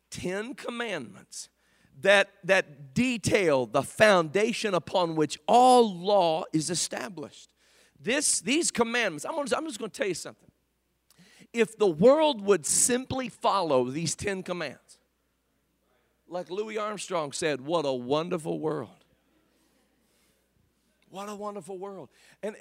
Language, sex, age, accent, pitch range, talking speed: English, male, 50-69, American, 185-240 Hz, 125 wpm